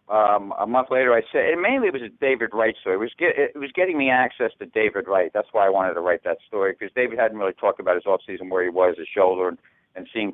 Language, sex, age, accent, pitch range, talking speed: English, male, 60-79, American, 115-180 Hz, 275 wpm